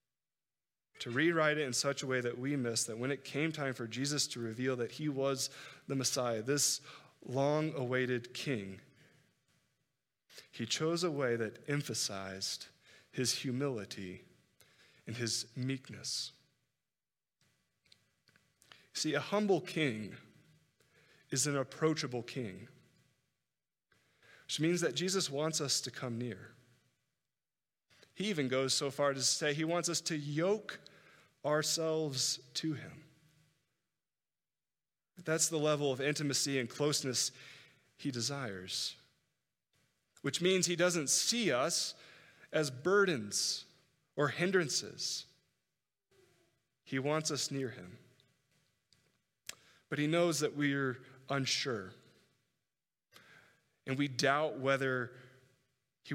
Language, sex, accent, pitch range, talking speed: English, male, American, 125-155 Hz, 110 wpm